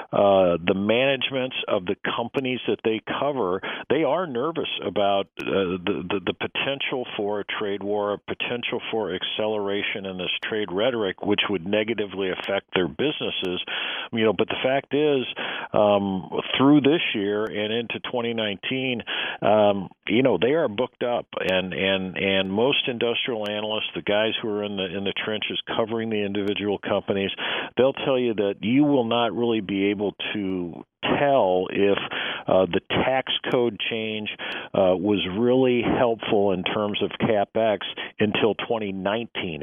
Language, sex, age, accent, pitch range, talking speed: English, male, 50-69, American, 95-115 Hz, 160 wpm